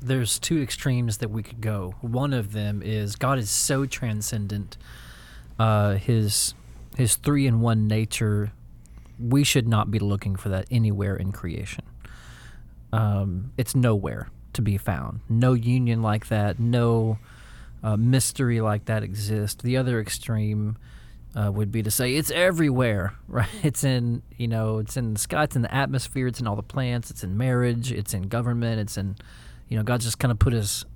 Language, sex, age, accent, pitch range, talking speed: English, male, 30-49, American, 105-120 Hz, 180 wpm